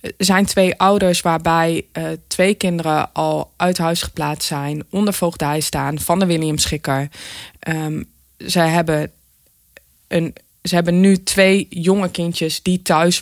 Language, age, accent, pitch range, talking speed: Dutch, 20-39, Dutch, 150-180 Hz, 130 wpm